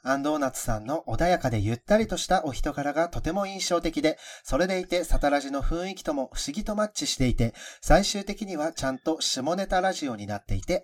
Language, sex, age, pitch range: Japanese, male, 40-59, 125-175 Hz